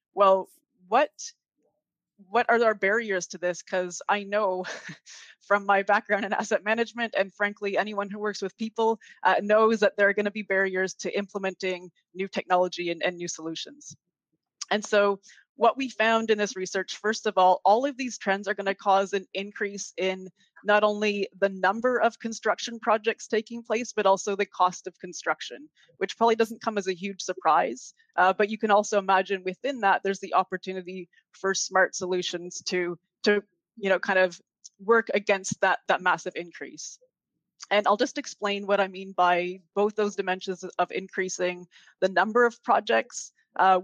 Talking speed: 175 wpm